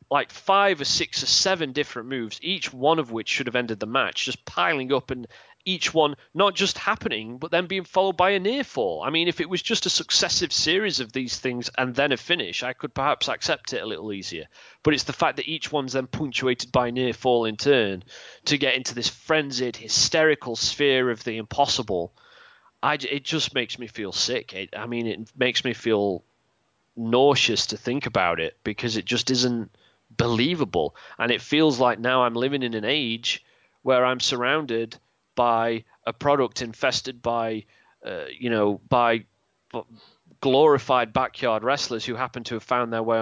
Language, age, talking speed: English, 30-49, 190 wpm